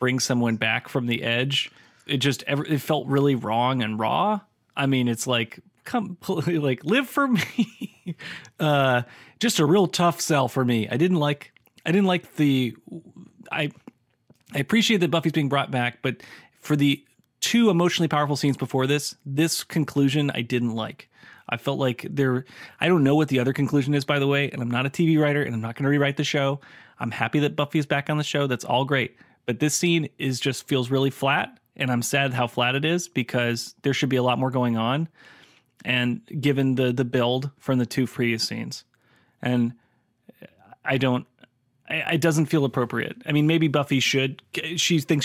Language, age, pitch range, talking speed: English, 30-49, 125-155 Hz, 200 wpm